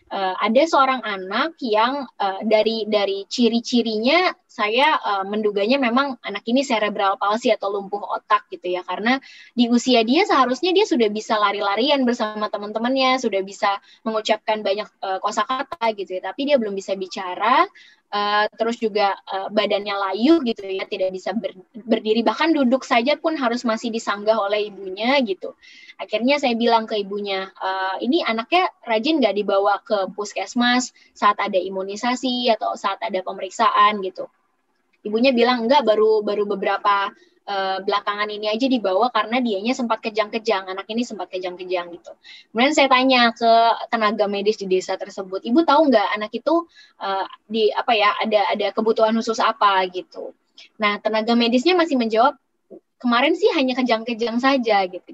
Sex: female